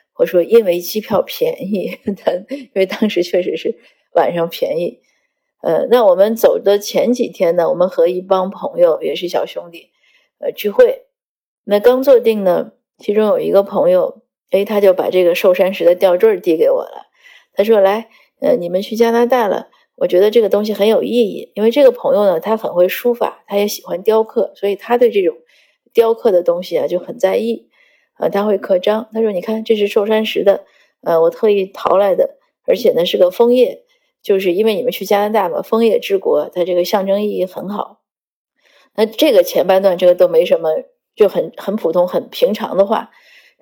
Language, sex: Chinese, female